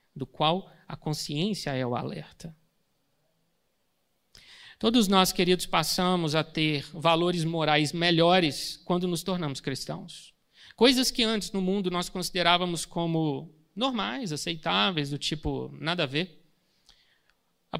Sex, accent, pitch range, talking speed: male, Brazilian, 155-205 Hz, 120 wpm